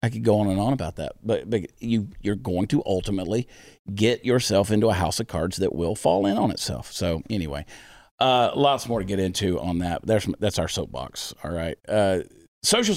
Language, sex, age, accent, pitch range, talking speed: English, male, 40-59, American, 100-130 Hz, 215 wpm